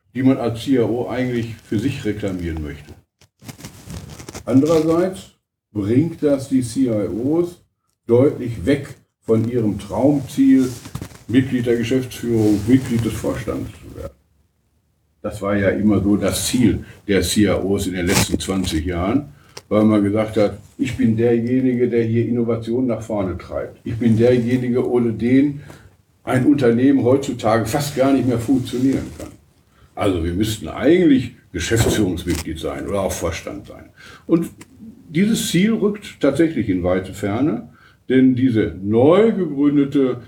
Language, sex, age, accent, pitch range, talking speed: German, male, 60-79, German, 105-140 Hz, 135 wpm